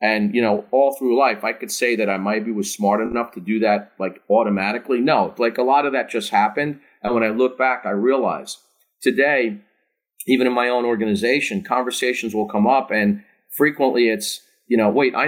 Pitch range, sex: 100-130 Hz, male